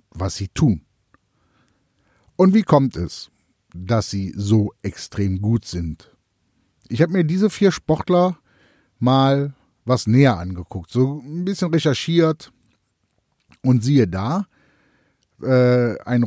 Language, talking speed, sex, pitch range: German, 120 wpm, male, 100-160 Hz